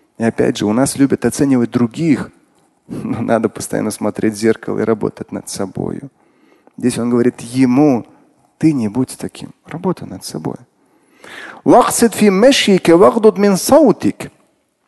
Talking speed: 115 wpm